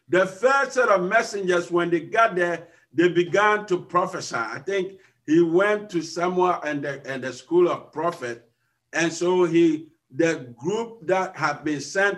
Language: English